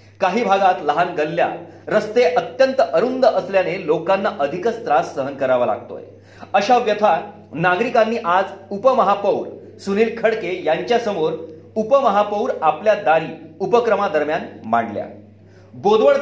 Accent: native